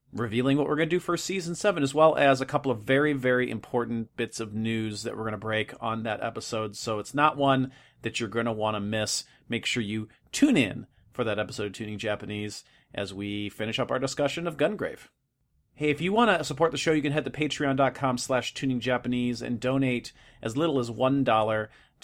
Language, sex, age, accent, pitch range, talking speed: English, male, 30-49, American, 110-135 Hz, 220 wpm